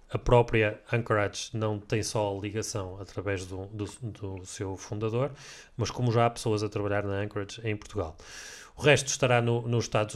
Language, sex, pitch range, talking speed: Portuguese, male, 105-125 Hz, 165 wpm